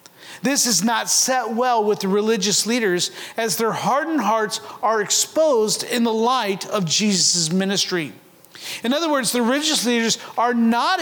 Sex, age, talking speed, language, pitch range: male, 40-59, 160 wpm, English, 175-230 Hz